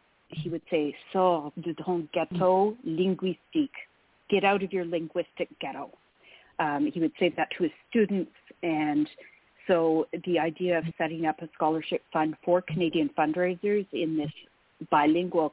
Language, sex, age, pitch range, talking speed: English, female, 40-59, 155-185 Hz, 145 wpm